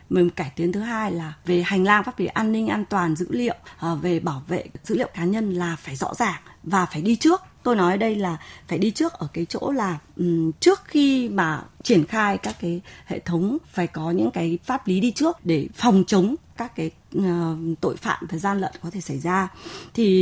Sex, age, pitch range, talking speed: female, 20-39, 165-215 Hz, 225 wpm